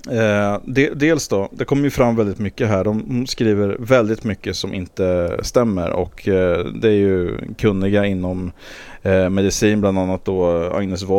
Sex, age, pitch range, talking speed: male, 30-49, 95-110 Hz, 165 wpm